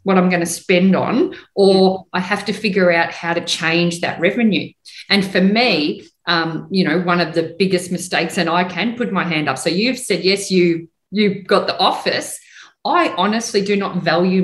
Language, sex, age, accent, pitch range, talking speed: English, female, 40-59, Australian, 175-230 Hz, 210 wpm